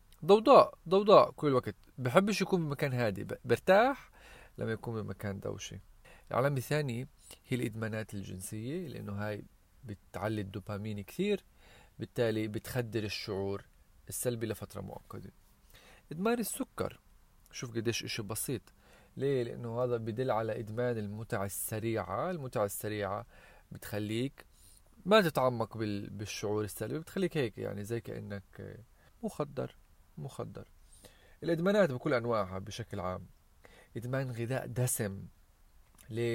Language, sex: Arabic, male